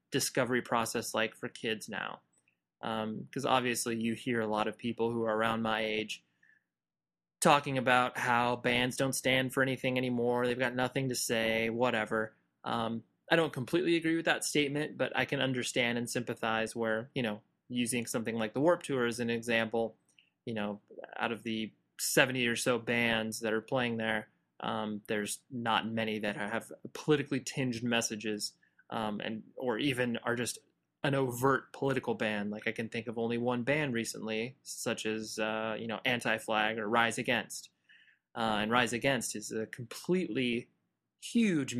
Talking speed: 170 wpm